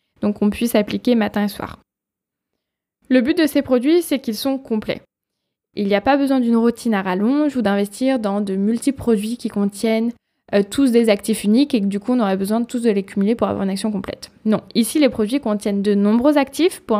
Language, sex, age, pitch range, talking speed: French, female, 10-29, 205-250 Hz, 225 wpm